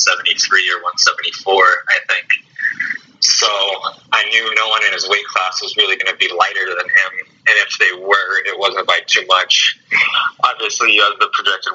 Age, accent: 20-39, American